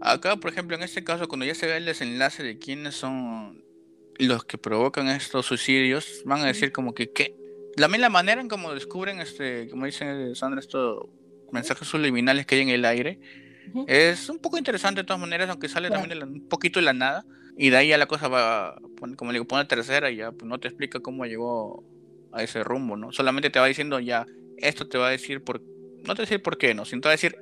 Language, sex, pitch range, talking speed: Spanish, male, 125-165 Hz, 235 wpm